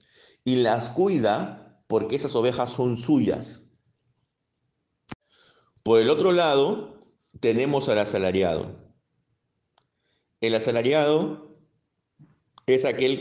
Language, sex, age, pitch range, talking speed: Spanish, male, 50-69, 115-155 Hz, 85 wpm